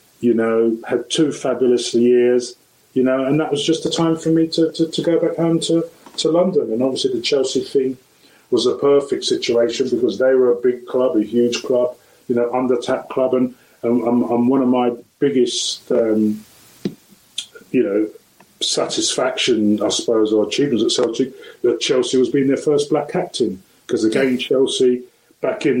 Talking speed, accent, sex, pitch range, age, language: 180 wpm, British, male, 120-160 Hz, 30-49, English